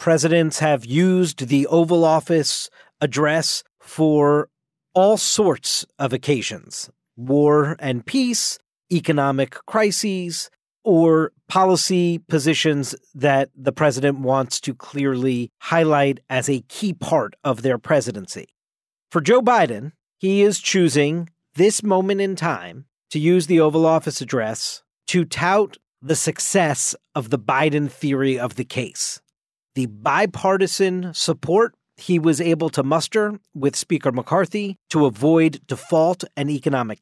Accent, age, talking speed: American, 40-59, 125 wpm